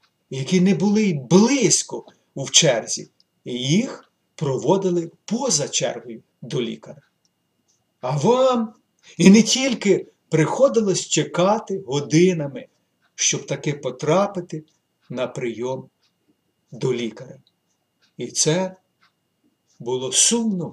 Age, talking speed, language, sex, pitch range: 50-69, 95 wpm, Ukrainian, male, 145-185 Hz